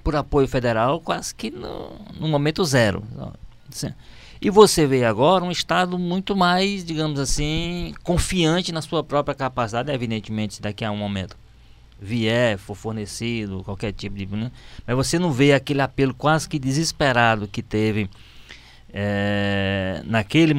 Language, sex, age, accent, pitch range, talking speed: Portuguese, male, 20-39, Brazilian, 110-150 Hz, 140 wpm